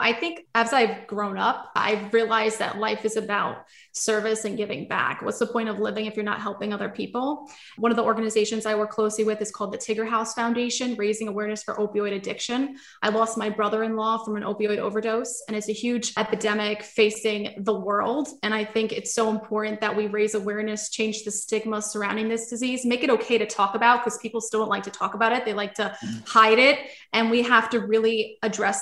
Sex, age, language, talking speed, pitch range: female, 20-39, English, 215 wpm, 210-230 Hz